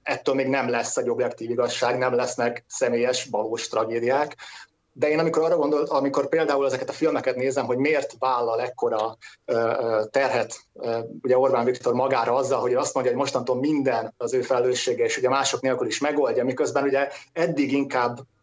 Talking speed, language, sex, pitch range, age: 170 wpm, Hungarian, male, 125-185 Hz, 30-49